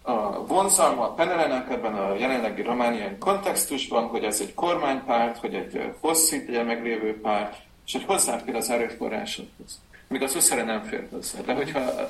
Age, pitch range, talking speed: 40-59, 100-125 Hz, 160 wpm